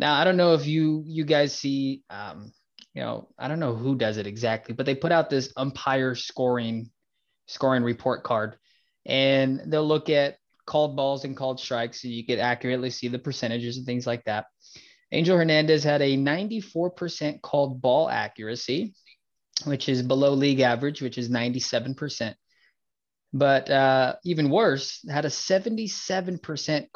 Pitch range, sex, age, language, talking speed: 125-160 Hz, male, 20-39, English, 160 wpm